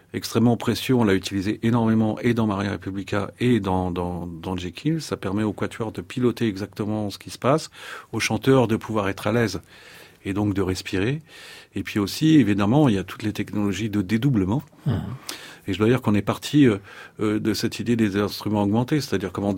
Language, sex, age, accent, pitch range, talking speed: French, male, 40-59, French, 95-120 Hz, 195 wpm